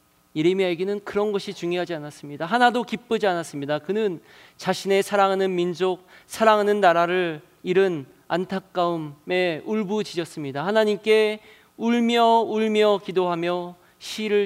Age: 40-59